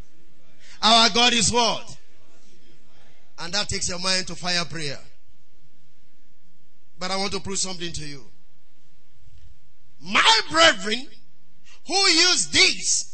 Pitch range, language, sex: 185-280 Hz, English, male